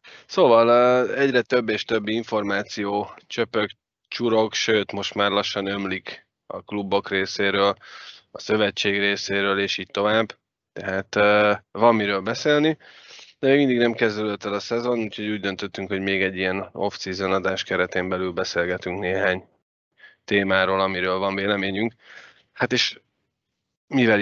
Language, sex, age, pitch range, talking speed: Hungarian, male, 20-39, 95-115 Hz, 135 wpm